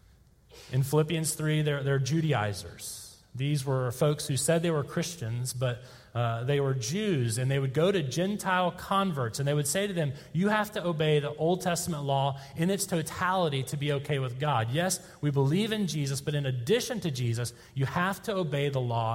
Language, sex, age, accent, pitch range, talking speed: English, male, 30-49, American, 120-170 Hz, 200 wpm